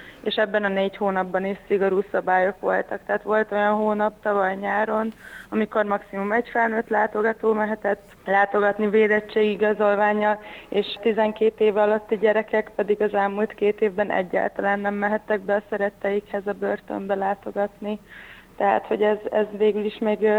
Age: 20-39